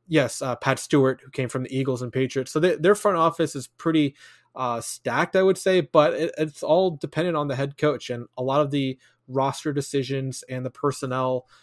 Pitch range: 130-150 Hz